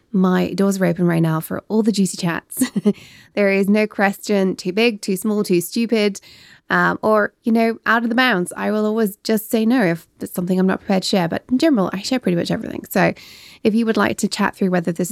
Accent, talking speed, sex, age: British, 240 wpm, female, 20-39